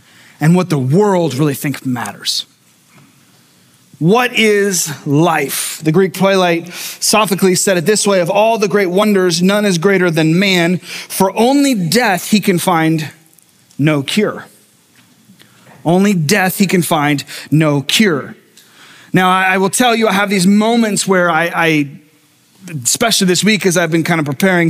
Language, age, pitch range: English, 30-49, 165-210 Hz